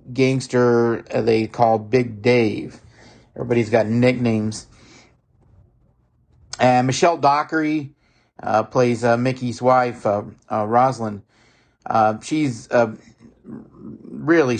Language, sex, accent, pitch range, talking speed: English, male, American, 110-130 Hz, 95 wpm